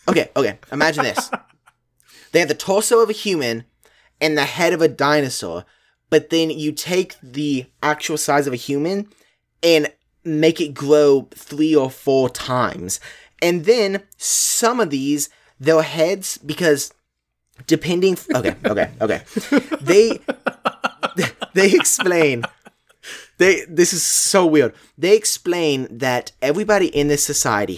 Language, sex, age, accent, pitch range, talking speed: English, male, 20-39, American, 125-180 Hz, 130 wpm